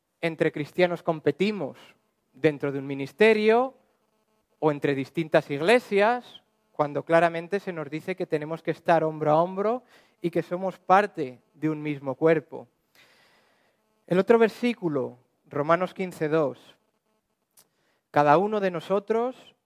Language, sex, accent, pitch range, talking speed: English, male, Spanish, 150-195 Hz, 125 wpm